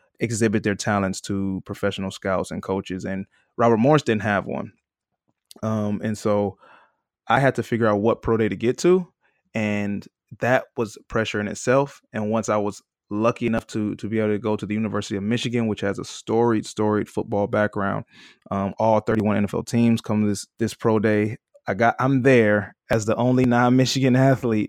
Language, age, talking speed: English, 20-39, 185 wpm